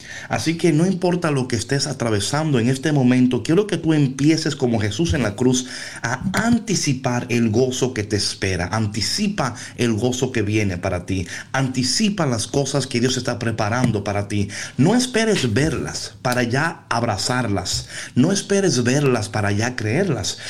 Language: Spanish